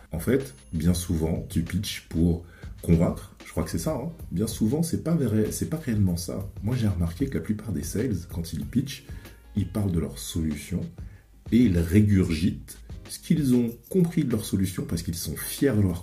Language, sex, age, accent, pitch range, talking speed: French, male, 40-59, French, 85-105 Hz, 200 wpm